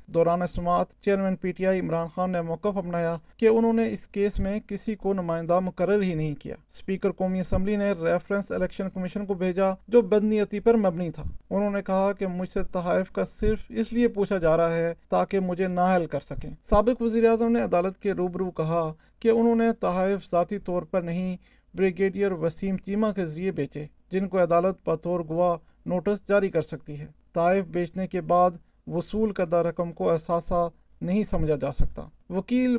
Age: 40-59